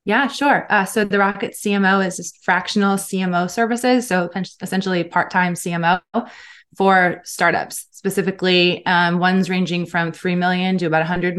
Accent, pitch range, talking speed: American, 170-205 Hz, 150 wpm